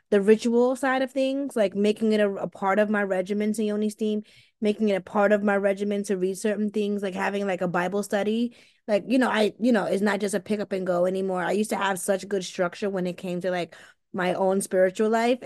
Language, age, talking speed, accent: English, 20-39, 250 wpm, American